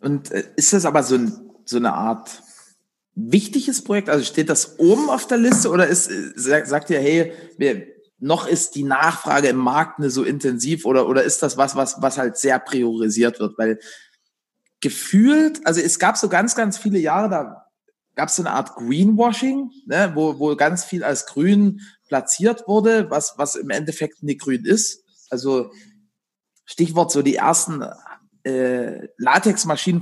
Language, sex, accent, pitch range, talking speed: German, male, German, 145-205 Hz, 160 wpm